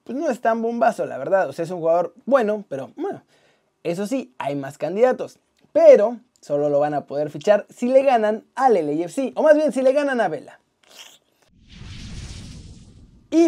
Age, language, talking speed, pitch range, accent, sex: 30-49, Spanish, 185 wpm, 215-275 Hz, Mexican, male